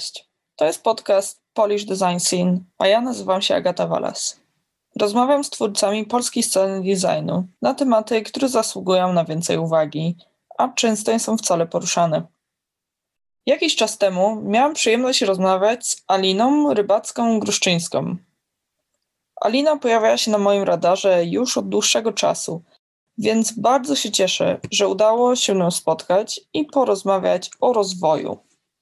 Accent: native